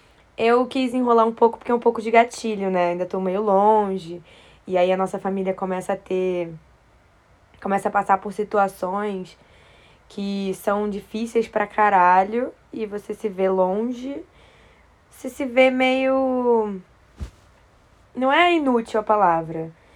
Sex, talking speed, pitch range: female, 145 wpm, 190-245 Hz